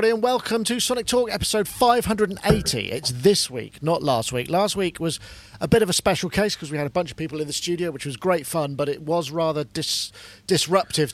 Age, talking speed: 40-59, 220 wpm